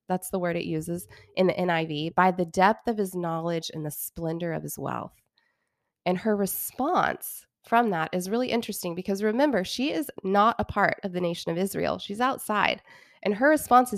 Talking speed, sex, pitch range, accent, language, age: 195 wpm, female, 170-205 Hz, American, English, 20-39